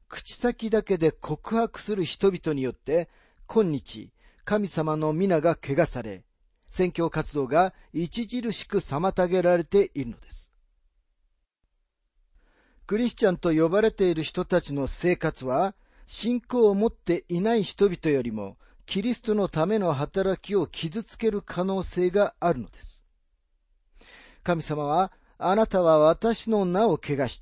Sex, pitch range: male, 135-195 Hz